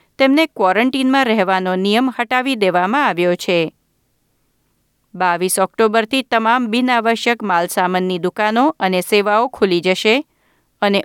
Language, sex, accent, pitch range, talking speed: Gujarati, female, native, 190-240 Hz, 110 wpm